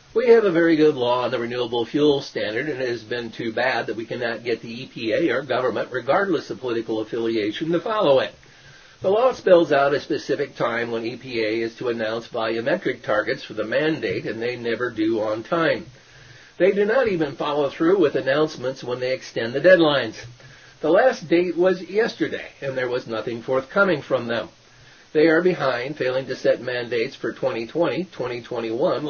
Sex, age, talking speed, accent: male, 50-69, 185 wpm, American